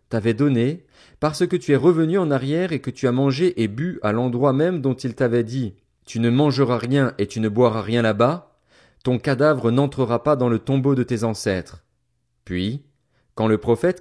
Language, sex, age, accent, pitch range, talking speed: French, male, 30-49, French, 105-135 Hz, 200 wpm